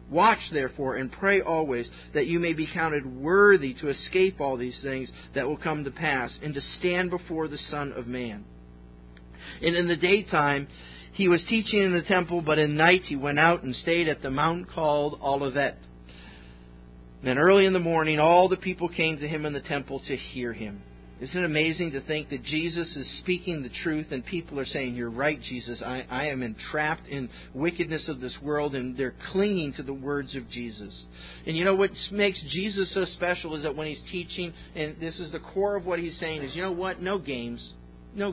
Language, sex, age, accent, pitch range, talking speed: English, male, 40-59, American, 120-175 Hz, 210 wpm